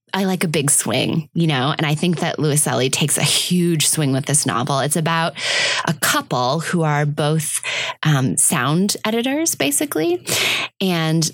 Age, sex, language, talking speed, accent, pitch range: 20-39, female, English, 165 wpm, American, 140-170 Hz